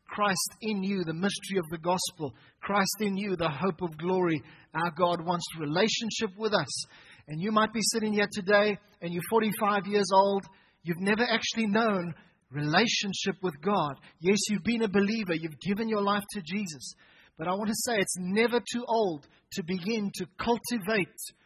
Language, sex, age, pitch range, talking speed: English, male, 30-49, 175-215 Hz, 180 wpm